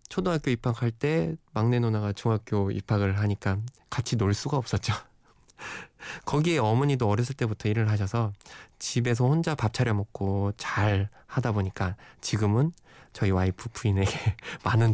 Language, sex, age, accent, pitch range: Korean, male, 20-39, native, 105-140 Hz